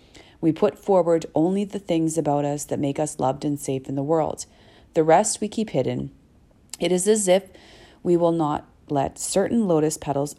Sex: female